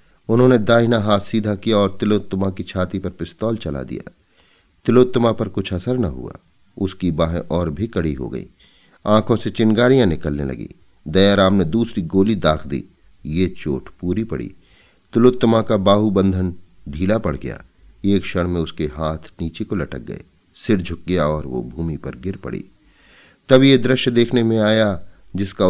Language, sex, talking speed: Hindi, male, 165 wpm